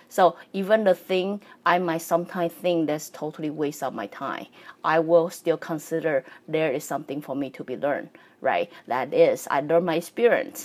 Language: English